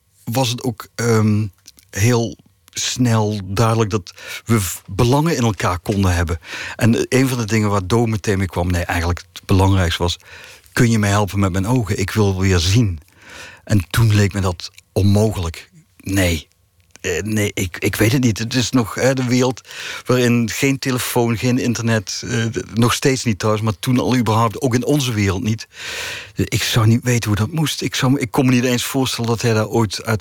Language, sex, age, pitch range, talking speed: Dutch, male, 50-69, 95-120 Hz, 195 wpm